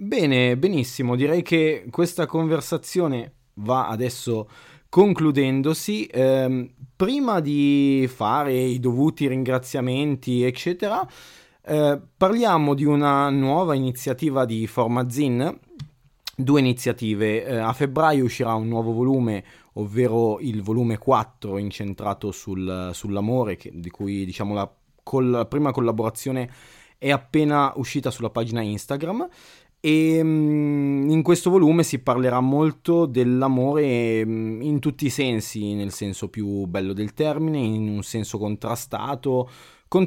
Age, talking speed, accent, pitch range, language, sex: 20-39, 110 wpm, native, 115-150 Hz, Italian, male